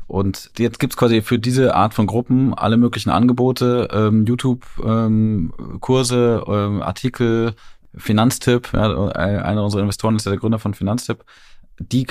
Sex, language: male, German